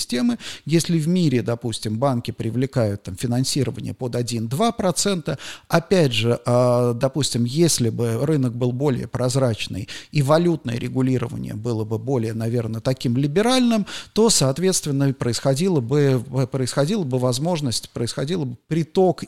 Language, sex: Russian, male